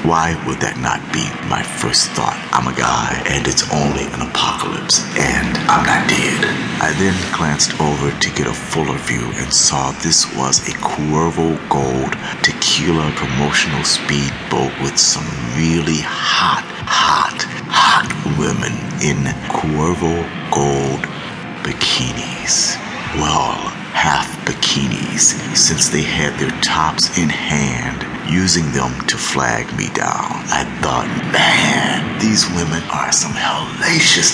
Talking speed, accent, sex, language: 130 wpm, American, male, English